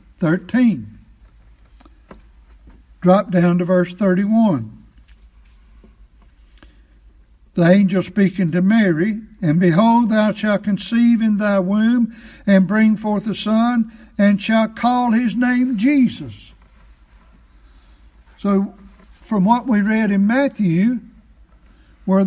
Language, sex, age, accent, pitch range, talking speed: English, male, 60-79, American, 170-220 Hz, 105 wpm